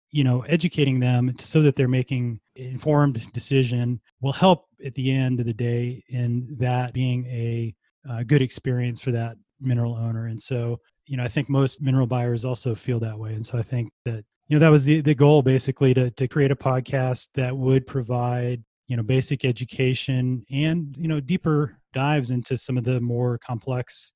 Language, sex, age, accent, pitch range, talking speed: English, male, 30-49, American, 115-130 Hz, 195 wpm